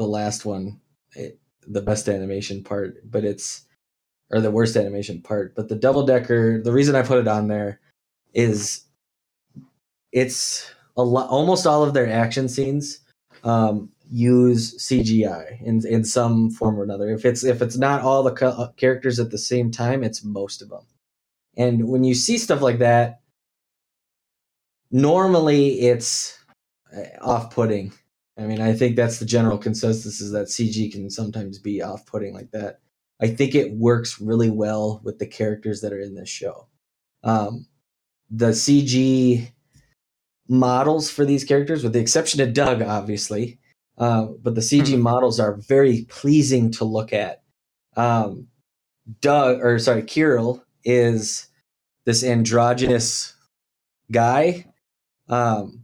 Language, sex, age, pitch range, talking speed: English, male, 20-39, 105-130 Hz, 145 wpm